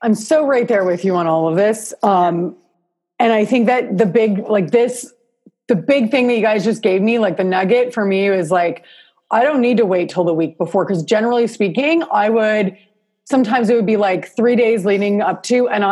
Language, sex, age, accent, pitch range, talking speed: English, female, 30-49, American, 190-240 Hz, 225 wpm